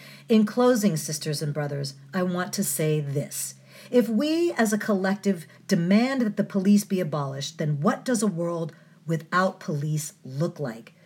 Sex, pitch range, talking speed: female, 160-215 Hz, 165 wpm